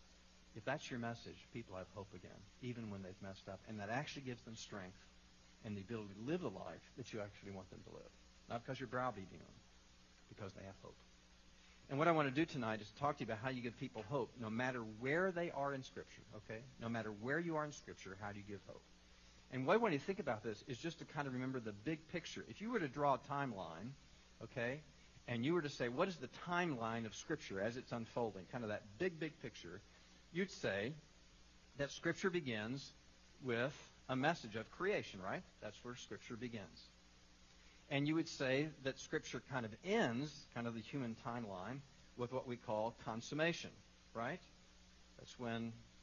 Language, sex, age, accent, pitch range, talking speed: English, male, 50-69, American, 95-140 Hz, 210 wpm